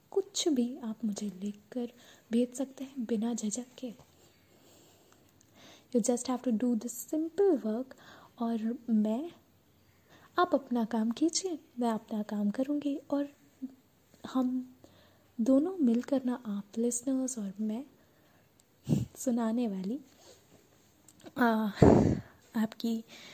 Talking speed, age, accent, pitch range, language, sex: 105 wpm, 20-39, native, 225-280 Hz, Hindi, female